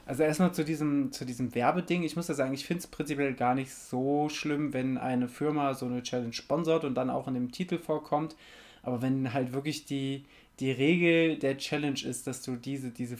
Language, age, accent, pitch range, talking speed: German, 20-39, German, 130-160 Hz, 215 wpm